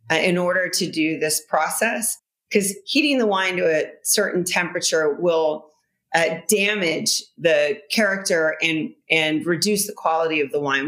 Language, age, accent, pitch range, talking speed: English, 40-59, American, 160-210 Hz, 150 wpm